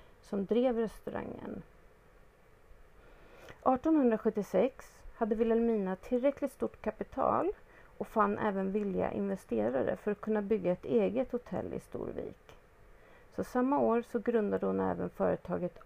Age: 40-59